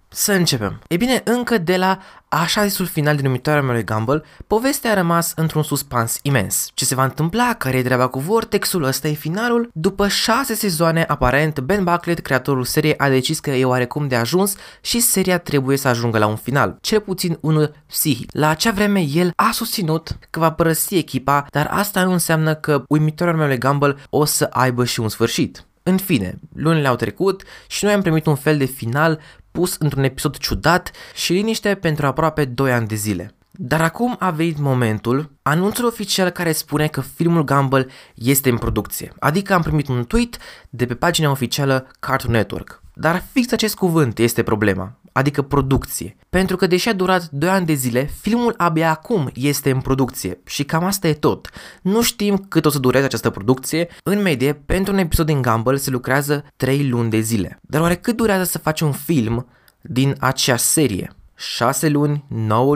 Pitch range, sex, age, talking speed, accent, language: 130-180 Hz, male, 20-39, 190 wpm, native, Romanian